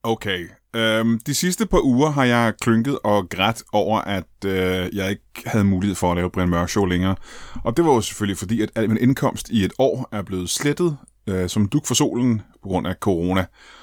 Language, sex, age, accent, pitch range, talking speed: Danish, male, 30-49, native, 90-120 Hz, 210 wpm